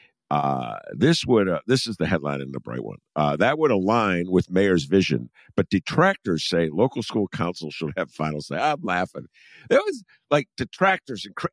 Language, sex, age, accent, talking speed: English, male, 50-69, American, 195 wpm